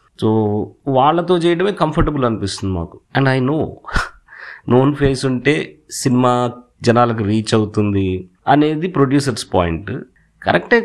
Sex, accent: male, native